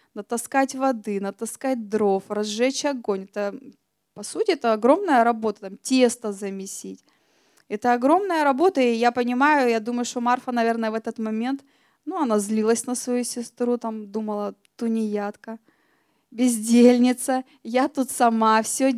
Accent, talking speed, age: native, 135 wpm, 20-39